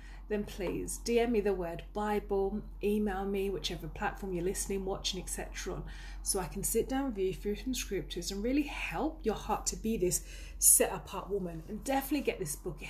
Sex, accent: female, British